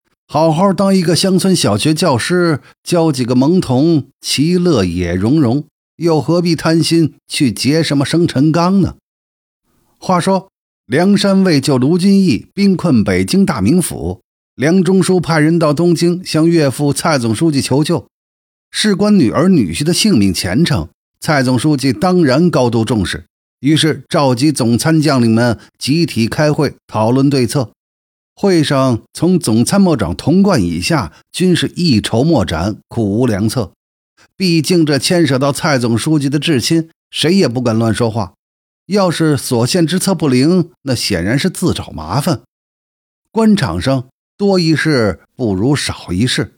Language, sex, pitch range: Chinese, male, 120-170 Hz